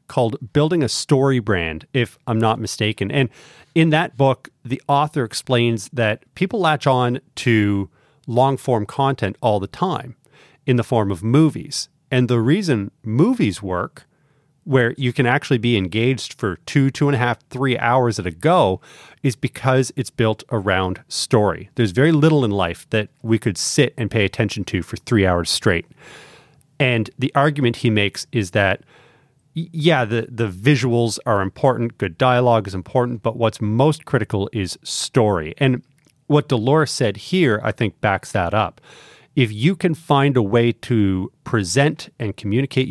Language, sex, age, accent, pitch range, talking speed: English, male, 30-49, American, 110-145 Hz, 165 wpm